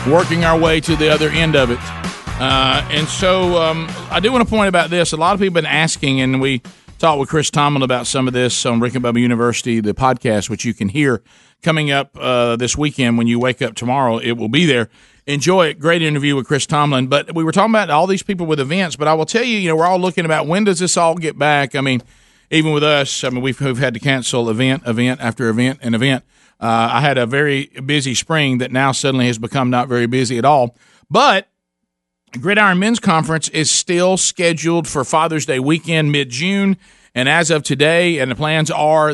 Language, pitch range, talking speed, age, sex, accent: English, 125-165 Hz, 230 wpm, 40-59, male, American